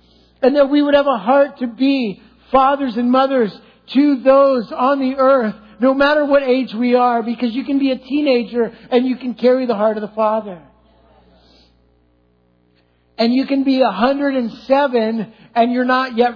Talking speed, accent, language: 170 wpm, American, English